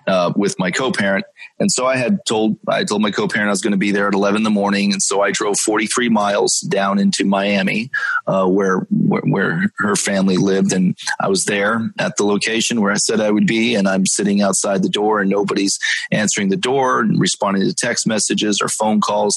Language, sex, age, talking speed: English, male, 30-49, 225 wpm